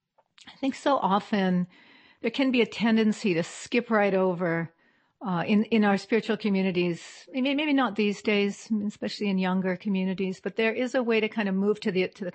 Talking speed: 195 wpm